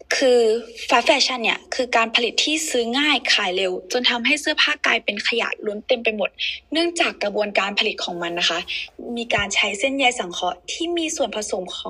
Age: 10-29